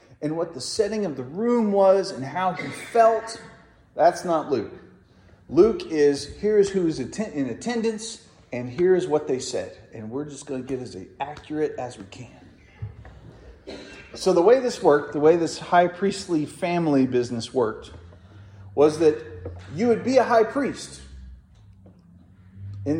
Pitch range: 125-185 Hz